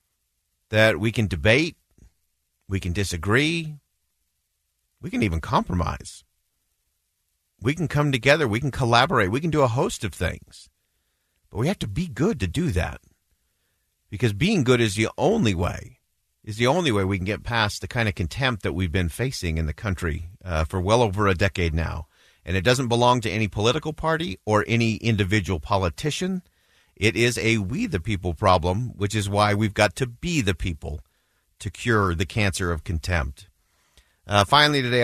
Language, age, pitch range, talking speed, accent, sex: English, 50-69, 85-120 Hz, 180 wpm, American, male